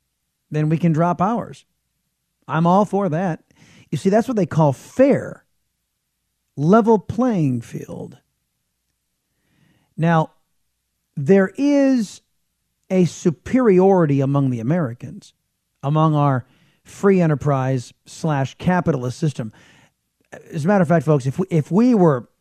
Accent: American